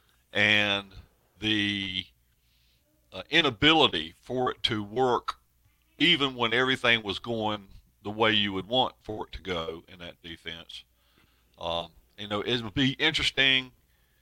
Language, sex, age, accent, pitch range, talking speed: English, male, 60-79, American, 70-110 Hz, 135 wpm